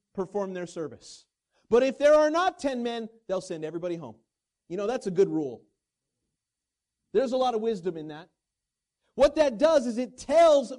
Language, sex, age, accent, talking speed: English, male, 40-59, American, 185 wpm